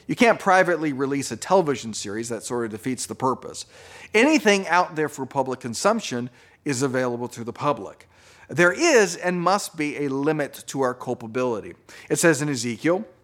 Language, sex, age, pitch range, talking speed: English, male, 40-59, 125-180 Hz, 170 wpm